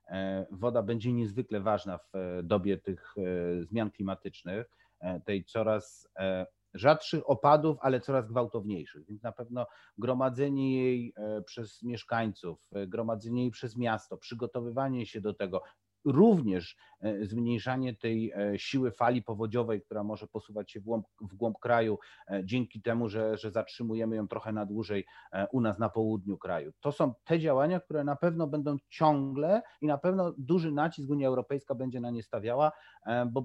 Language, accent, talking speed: Polish, native, 145 wpm